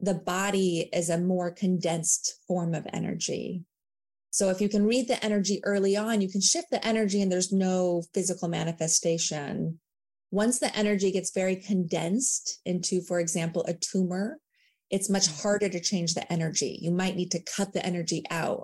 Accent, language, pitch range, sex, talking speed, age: American, English, 175-210 Hz, female, 175 wpm, 30-49